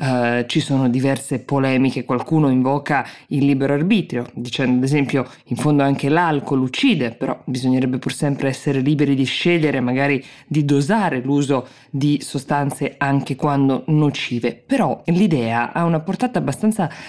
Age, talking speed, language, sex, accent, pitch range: 20-39, 140 wpm, Italian, female, native, 130-165 Hz